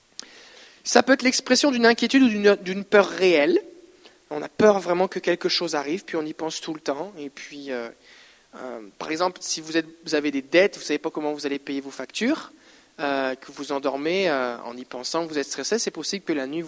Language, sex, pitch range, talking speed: French, male, 155-235 Hz, 240 wpm